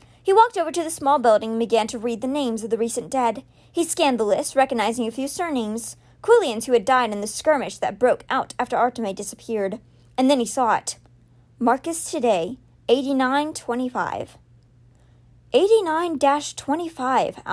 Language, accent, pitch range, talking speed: English, American, 220-290 Hz, 160 wpm